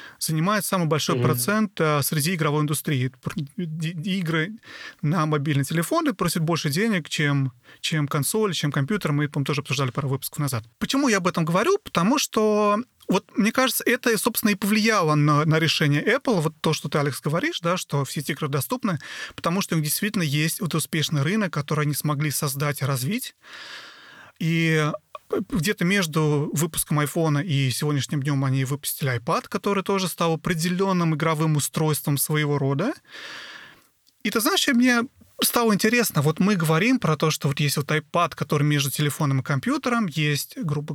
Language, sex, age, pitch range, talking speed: Russian, male, 30-49, 150-205 Hz, 165 wpm